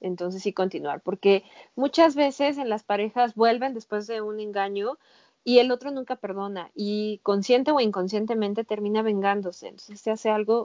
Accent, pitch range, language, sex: Mexican, 195-240 Hz, Spanish, female